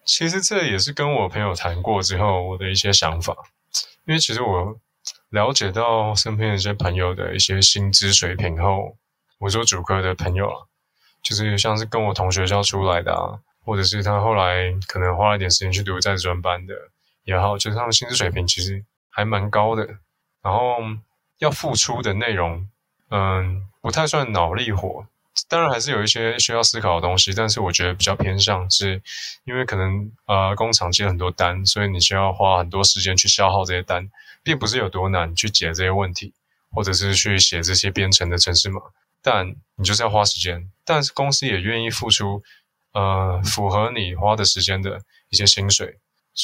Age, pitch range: 20-39, 95-110 Hz